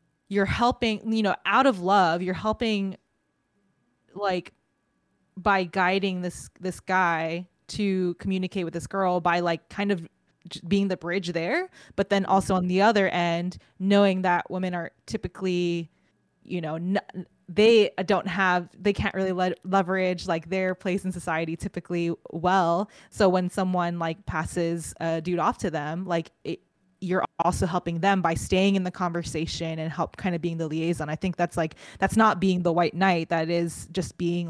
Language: English